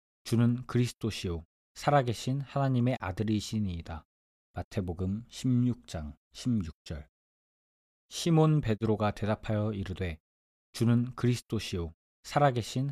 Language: Korean